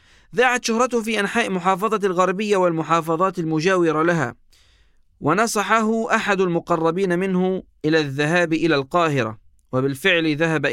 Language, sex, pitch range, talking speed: Arabic, male, 140-185 Hz, 105 wpm